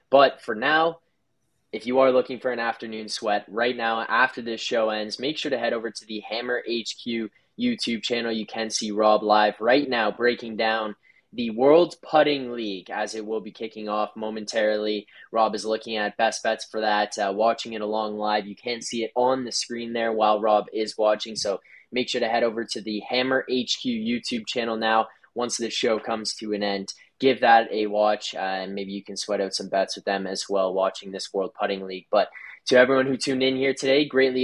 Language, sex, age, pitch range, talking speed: English, male, 10-29, 110-125 Hz, 215 wpm